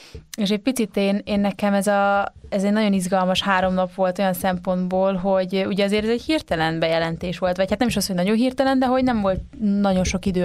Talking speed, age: 230 wpm, 20-39